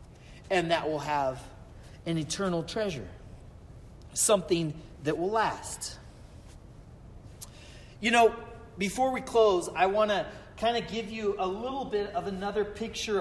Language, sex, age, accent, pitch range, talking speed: English, male, 40-59, American, 175-240 Hz, 130 wpm